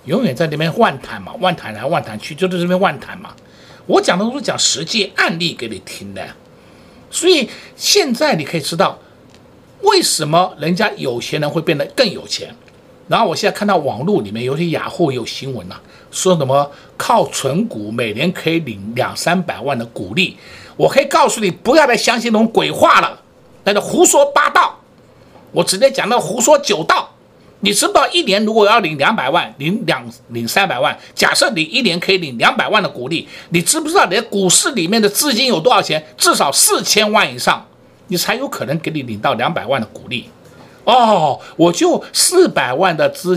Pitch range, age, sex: 170-275 Hz, 60-79, male